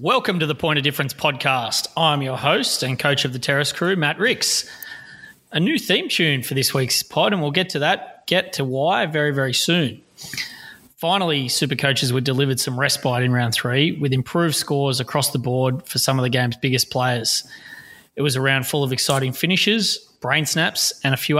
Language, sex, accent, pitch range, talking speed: English, male, Australian, 130-155 Hz, 205 wpm